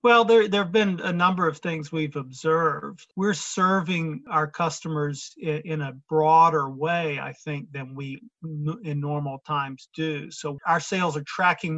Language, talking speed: English, 170 wpm